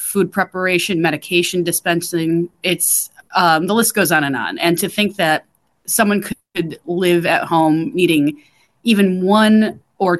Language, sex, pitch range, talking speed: English, female, 160-190 Hz, 145 wpm